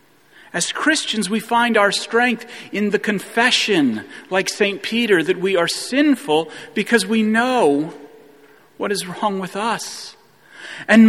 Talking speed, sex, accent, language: 135 wpm, male, American, English